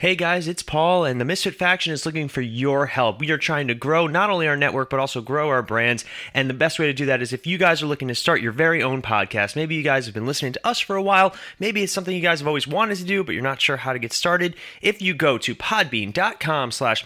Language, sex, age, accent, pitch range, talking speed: English, male, 20-39, American, 125-175 Hz, 285 wpm